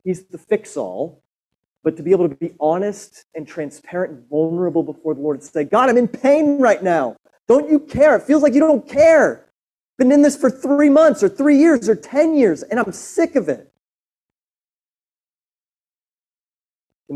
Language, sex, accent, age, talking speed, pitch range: English, male, American, 30-49, 185 wpm, 135-225 Hz